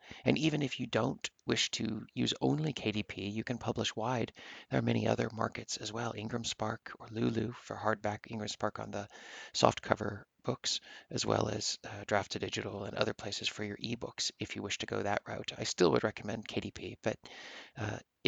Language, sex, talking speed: English, male, 195 wpm